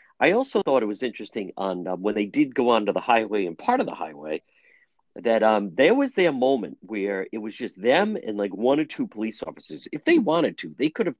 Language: English